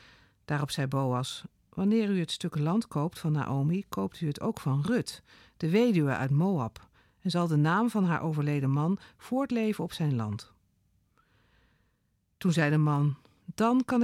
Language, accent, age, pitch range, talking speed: Dutch, Dutch, 50-69, 140-195 Hz, 165 wpm